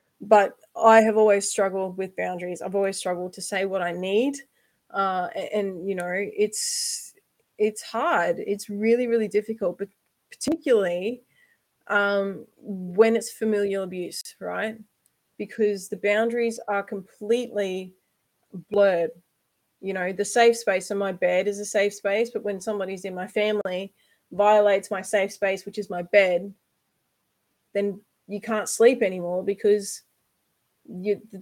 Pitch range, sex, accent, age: 195-220 Hz, female, Australian, 20-39